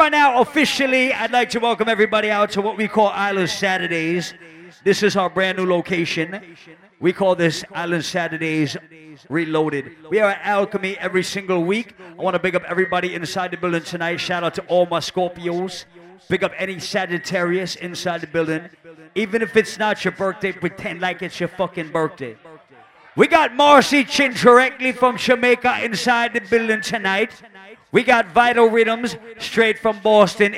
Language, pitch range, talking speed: English, 175-230 Hz, 170 wpm